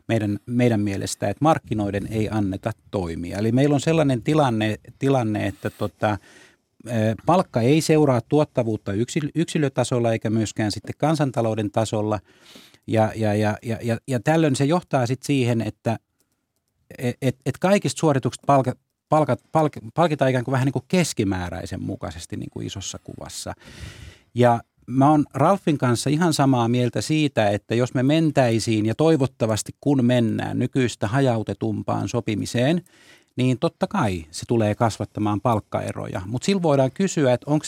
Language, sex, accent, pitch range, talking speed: Finnish, male, native, 110-145 Hz, 145 wpm